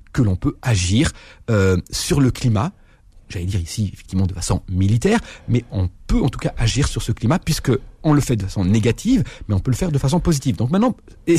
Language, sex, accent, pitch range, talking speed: French, male, French, 105-150 Hz, 225 wpm